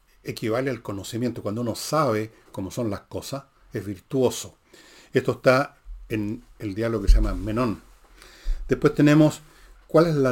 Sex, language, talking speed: male, Spanish, 150 wpm